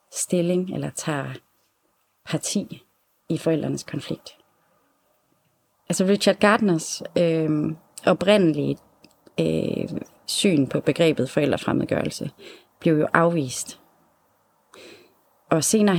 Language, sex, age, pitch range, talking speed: Danish, female, 30-49, 155-190 Hz, 85 wpm